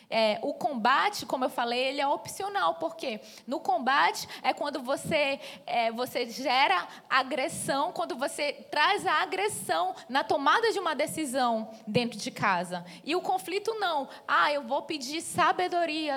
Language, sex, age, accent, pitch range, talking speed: Portuguese, female, 20-39, Brazilian, 265-375 Hz, 150 wpm